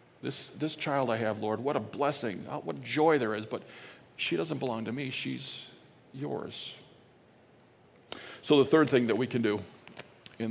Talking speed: 170 wpm